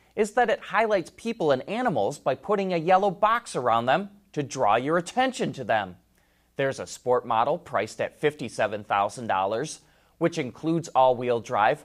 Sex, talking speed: male, 155 wpm